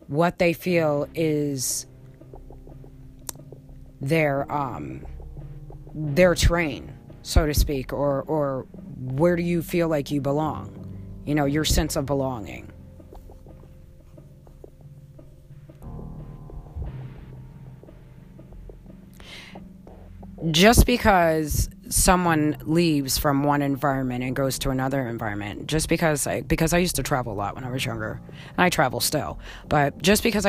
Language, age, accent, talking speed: English, 30-49, American, 115 wpm